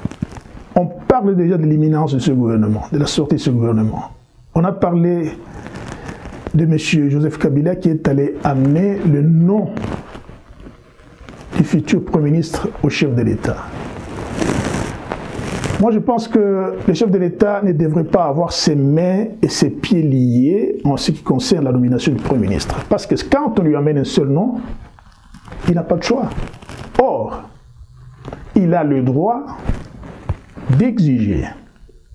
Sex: male